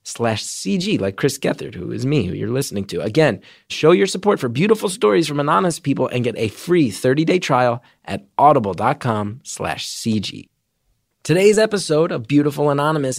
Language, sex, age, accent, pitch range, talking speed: English, male, 30-49, American, 120-165 Hz, 175 wpm